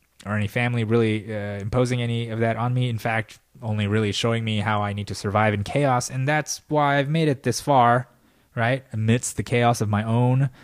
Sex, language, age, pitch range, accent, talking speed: male, English, 20-39, 100-125 Hz, American, 220 wpm